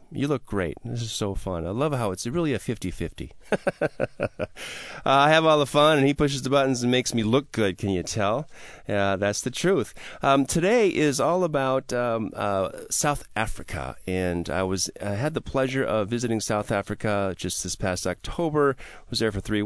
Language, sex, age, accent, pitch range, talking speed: English, male, 40-59, American, 90-125 Hz, 195 wpm